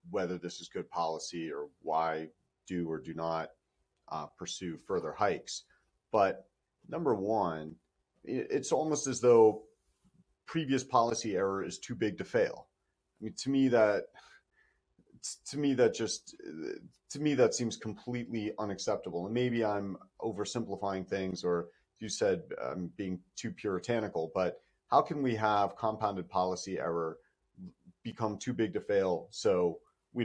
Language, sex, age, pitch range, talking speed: English, male, 40-59, 90-130 Hz, 145 wpm